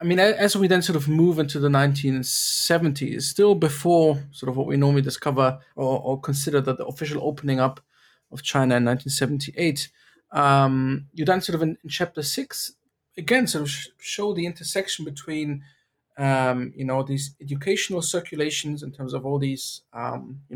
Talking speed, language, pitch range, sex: 180 wpm, English, 135-155 Hz, male